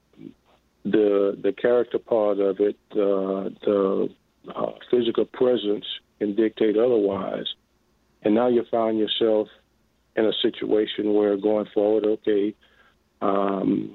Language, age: English, 50-69